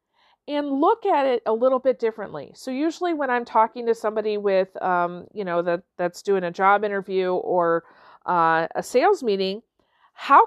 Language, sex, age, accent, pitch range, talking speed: English, female, 40-59, American, 210-315 Hz, 180 wpm